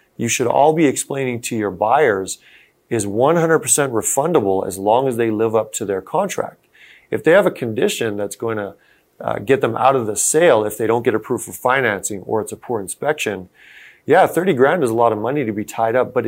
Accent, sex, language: American, male, English